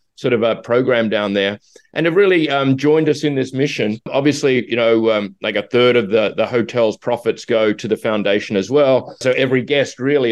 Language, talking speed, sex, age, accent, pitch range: English, 215 wpm, male, 30-49, Australian, 110-135 Hz